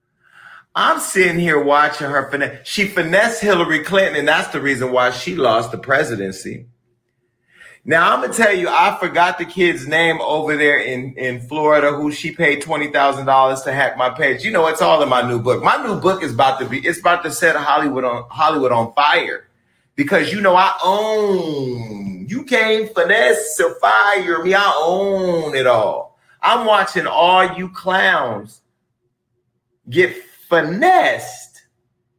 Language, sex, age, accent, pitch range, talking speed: English, male, 30-49, American, 130-195 Hz, 170 wpm